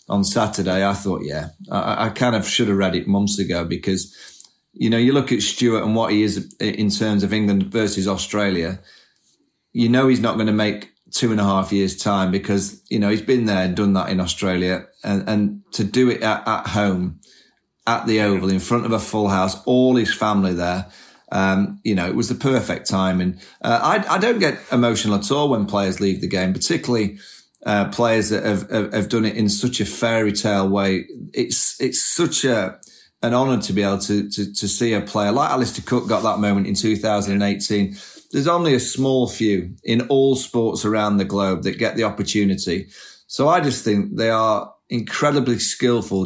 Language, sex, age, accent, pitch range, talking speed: English, male, 30-49, British, 100-120 Hz, 210 wpm